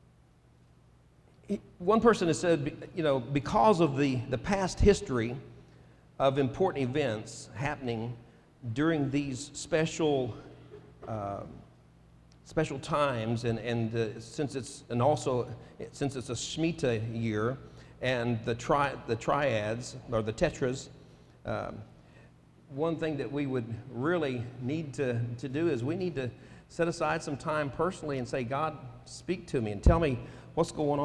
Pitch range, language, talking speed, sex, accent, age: 115-150 Hz, English, 140 wpm, male, American, 50-69